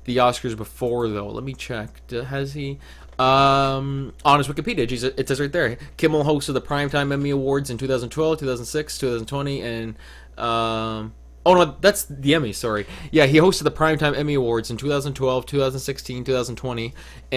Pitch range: 115-140 Hz